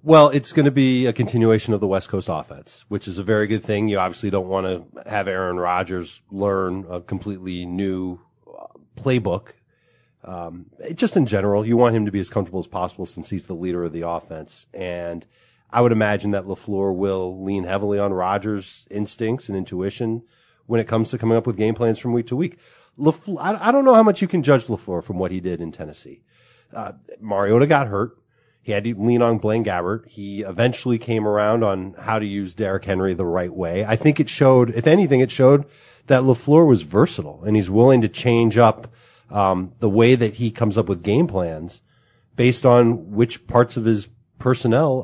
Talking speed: 205 wpm